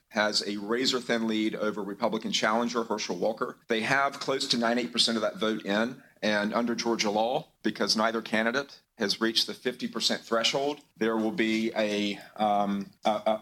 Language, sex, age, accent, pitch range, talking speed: English, male, 40-59, American, 105-120 Hz, 160 wpm